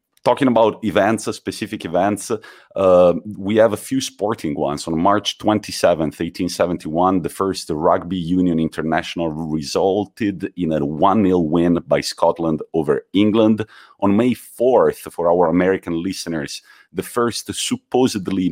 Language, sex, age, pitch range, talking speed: English, male, 40-59, 85-105 Hz, 130 wpm